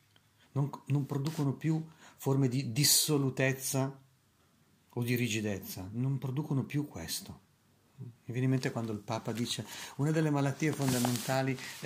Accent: native